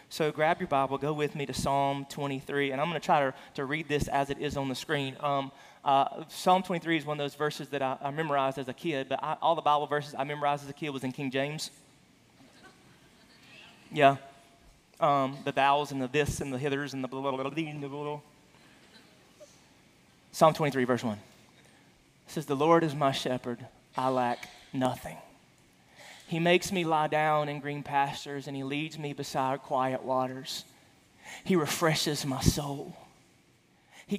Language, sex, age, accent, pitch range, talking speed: English, male, 30-49, American, 140-175 Hz, 190 wpm